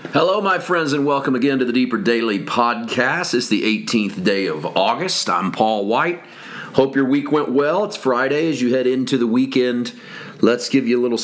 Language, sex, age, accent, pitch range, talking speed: English, male, 40-59, American, 115-145 Hz, 205 wpm